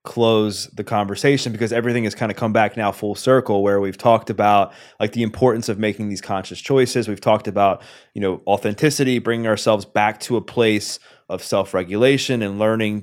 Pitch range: 100-120 Hz